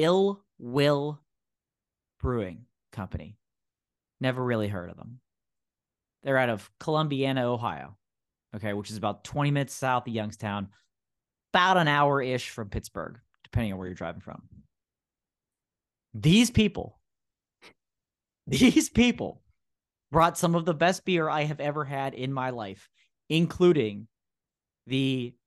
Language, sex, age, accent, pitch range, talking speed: English, male, 30-49, American, 110-150 Hz, 125 wpm